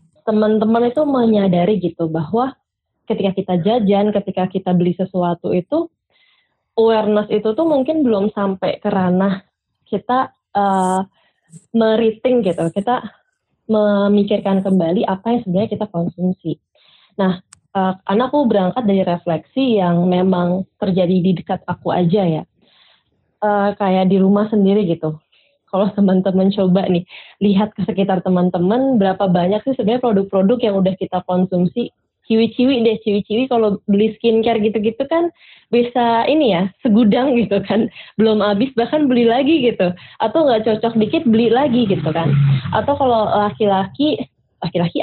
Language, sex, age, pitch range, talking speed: Indonesian, female, 20-39, 185-230 Hz, 135 wpm